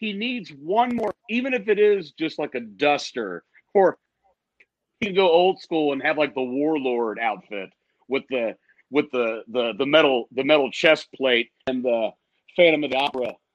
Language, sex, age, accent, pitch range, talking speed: English, male, 40-59, American, 125-160 Hz, 180 wpm